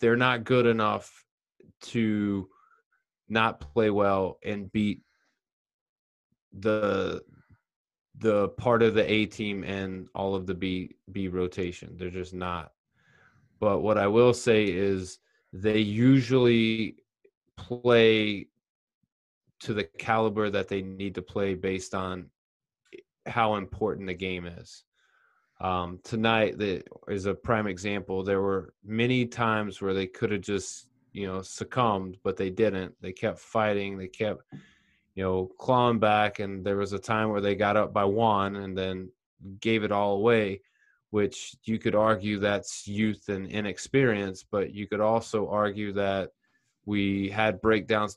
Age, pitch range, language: 20-39, 95-110 Hz, English